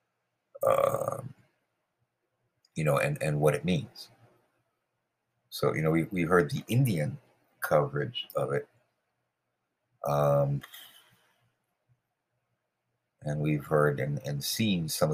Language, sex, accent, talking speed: English, male, American, 105 wpm